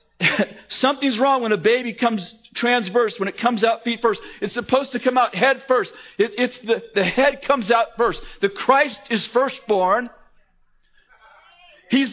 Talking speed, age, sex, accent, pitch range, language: 165 wpm, 50-69, male, American, 175-230 Hz, English